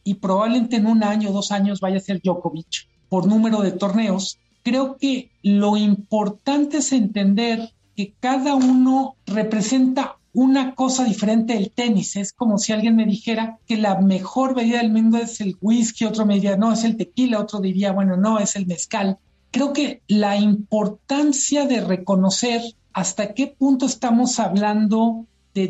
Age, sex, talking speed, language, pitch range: 50-69, male, 170 wpm, Spanish, 200-240 Hz